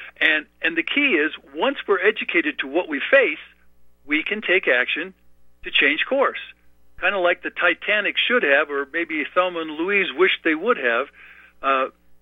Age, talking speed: 50-69, 175 wpm